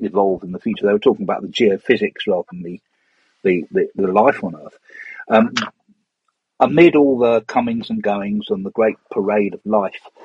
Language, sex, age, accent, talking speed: English, male, 50-69, British, 185 wpm